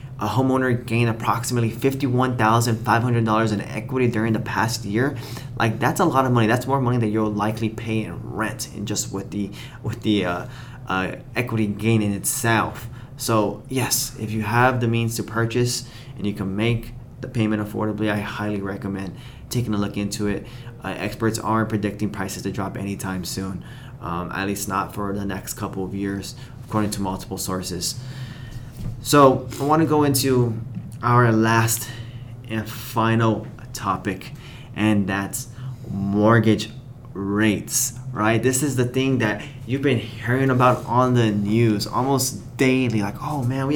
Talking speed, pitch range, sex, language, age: 165 wpm, 110-130 Hz, male, English, 20-39